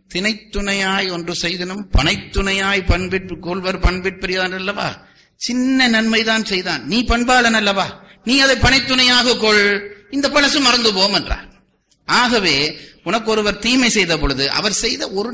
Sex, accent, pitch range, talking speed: male, native, 120-190 Hz, 115 wpm